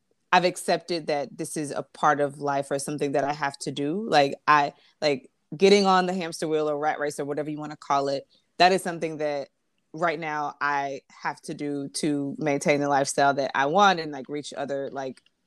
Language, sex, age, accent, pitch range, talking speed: English, female, 20-39, American, 145-175 Hz, 215 wpm